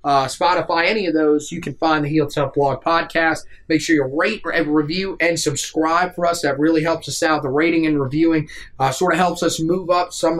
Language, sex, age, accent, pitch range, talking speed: English, male, 30-49, American, 150-175 Hz, 230 wpm